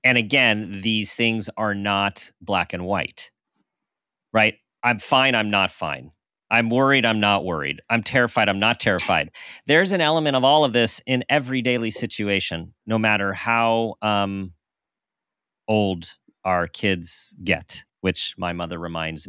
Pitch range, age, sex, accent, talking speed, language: 90-115 Hz, 40-59, male, American, 150 wpm, English